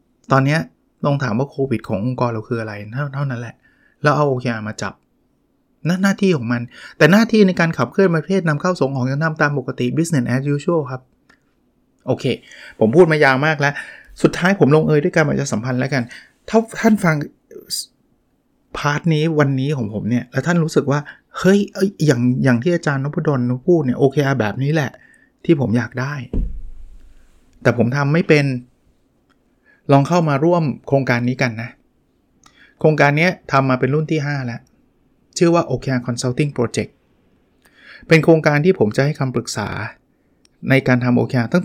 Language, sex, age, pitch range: Thai, male, 20-39, 120-155 Hz